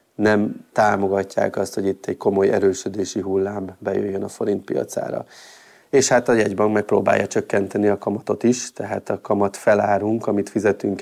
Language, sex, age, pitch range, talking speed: Hungarian, male, 30-49, 100-110 Hz, 145 wpm